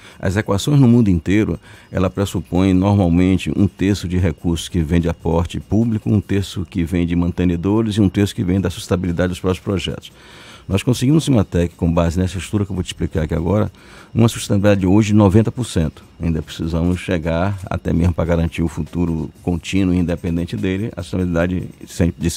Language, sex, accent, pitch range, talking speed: Portuguese, male, Brazilian, 90-115 Hz, 190 wpm